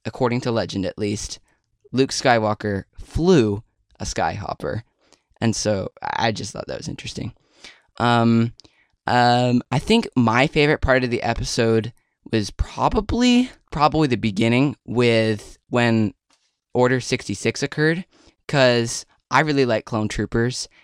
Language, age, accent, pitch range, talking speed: English, 20-39, American, 110-135 Hz, 125 wpm